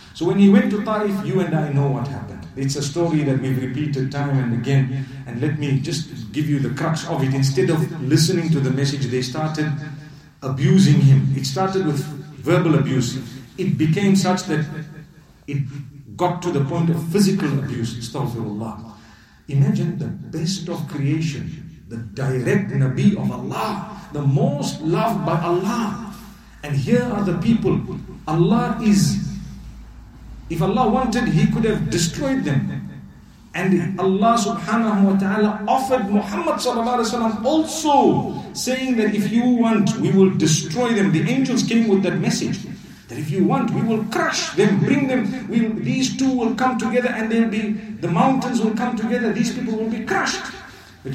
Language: English